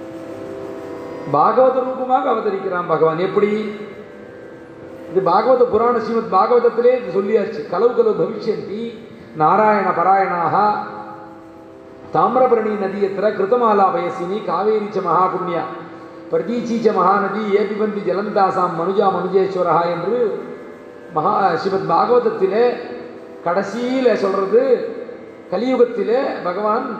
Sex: male